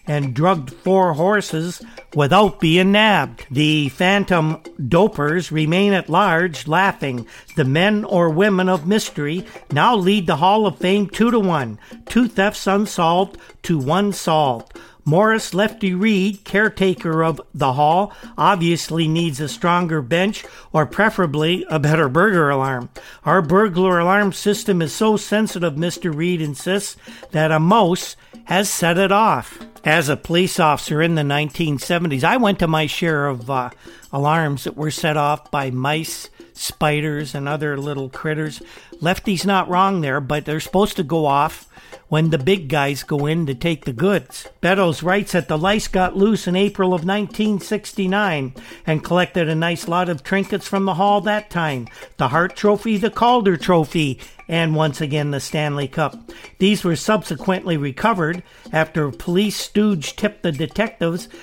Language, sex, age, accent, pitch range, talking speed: English, male, 60-79, American, 155-195 Hz, 155 wpm